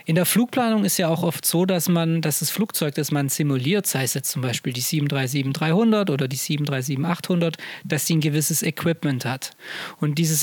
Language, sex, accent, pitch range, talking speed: German, male, German, 150-185 Hz, 205 wpm